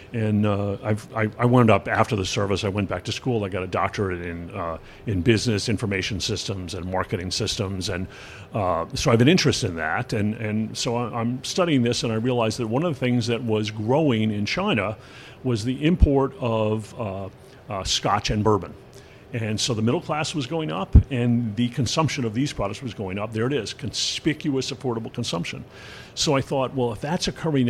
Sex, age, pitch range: male, 50-69, 105-130 Hz